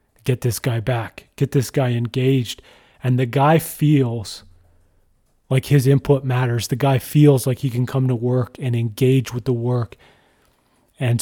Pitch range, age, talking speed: 125-140 Hz, 30-49, 165 wpm